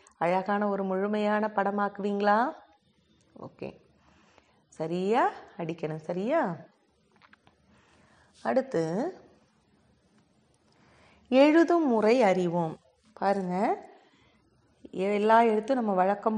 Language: Tamil